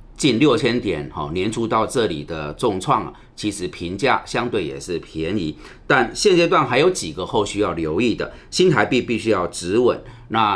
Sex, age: male, 40-59